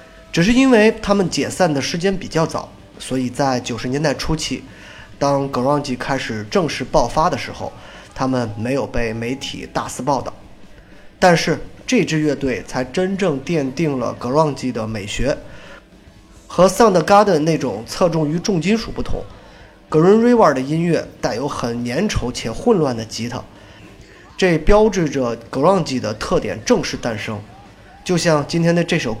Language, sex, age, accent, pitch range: Chinese, male, 20-39, native, 115-160 Hz